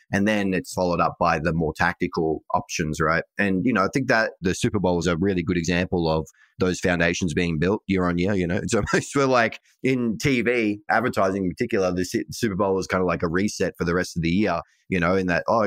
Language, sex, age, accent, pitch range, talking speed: English, male, 20-39, Australian, 90-110 Hz, 240 wpm